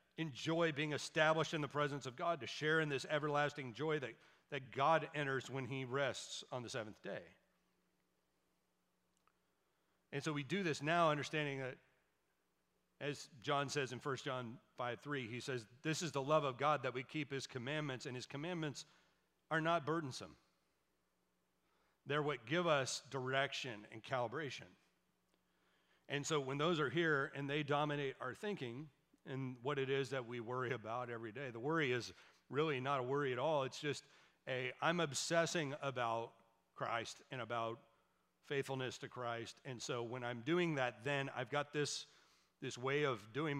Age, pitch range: 40-59, 125-155 Hz